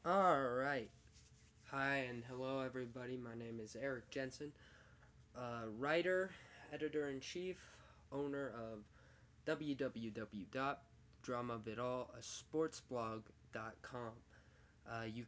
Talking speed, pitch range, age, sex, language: 65 wpm, 115-130 Hz, 20-39, male, English